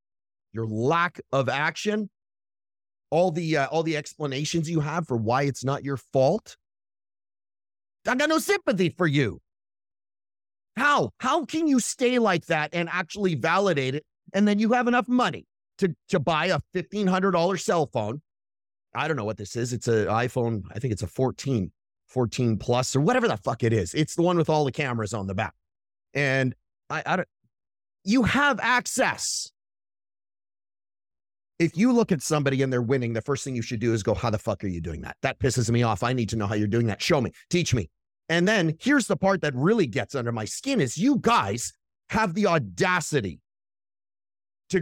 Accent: American